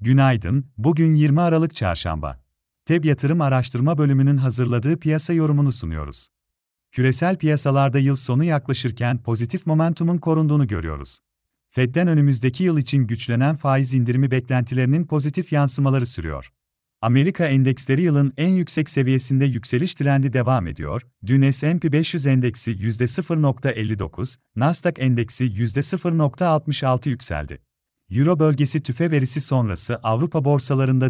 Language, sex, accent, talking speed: Turkish, male, native, 115 wpm